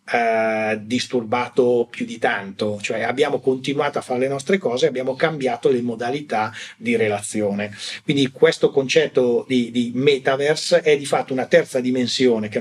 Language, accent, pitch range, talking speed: Italian, native, 120-165 Hz, 150 wpm